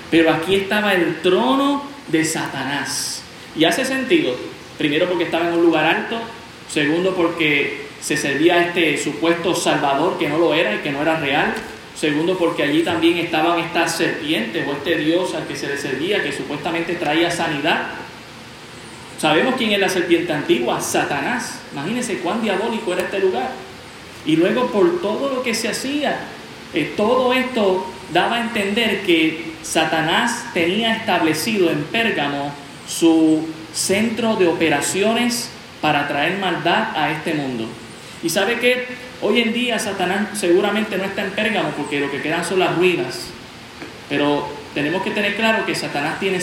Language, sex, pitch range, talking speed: Spanish, male, 160-205 Hz, 160 wpm